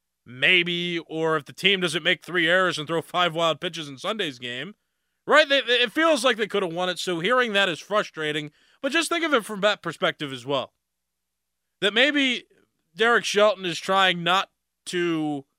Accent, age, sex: American, 20-39, male